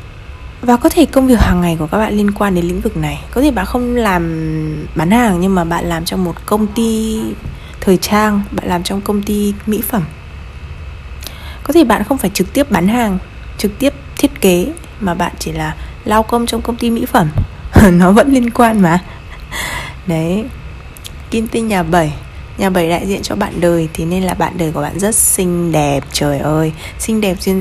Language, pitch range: Vietnamese, 160-220 Hz